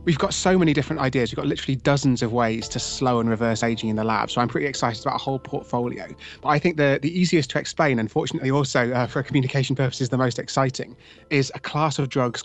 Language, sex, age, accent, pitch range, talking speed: English, male, 30-49, British, 120-140 Hz, 240 wpm